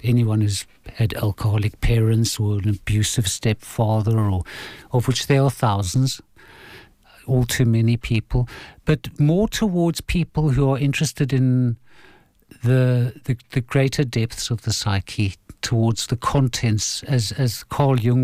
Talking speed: 140 wpm